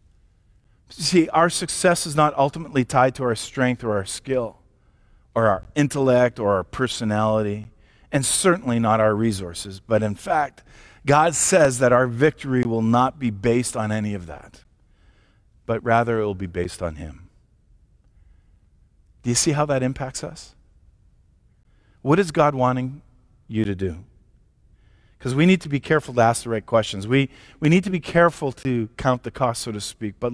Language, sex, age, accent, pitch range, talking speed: English, male, 40-59, American, 100-130 Hz, 170 wpm